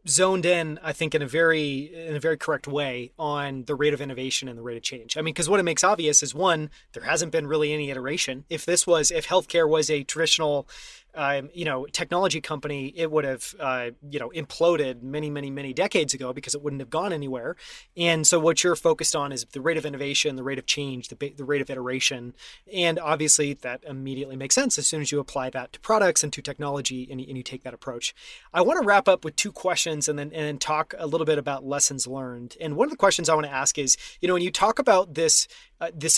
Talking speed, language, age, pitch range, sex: 250 wpm, English, 30-49, 140-165 Hz, male